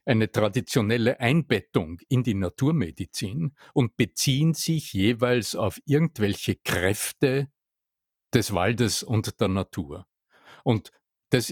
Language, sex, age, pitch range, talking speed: German, male, 50-69, 100-125 Hz, 105 wpm